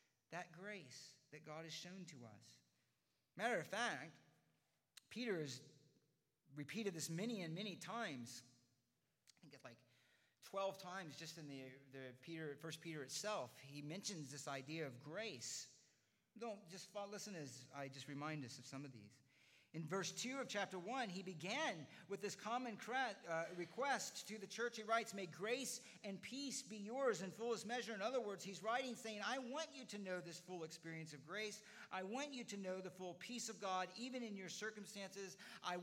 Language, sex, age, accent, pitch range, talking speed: English, male, 40-59, American, 145-210 Hz, 185 wpm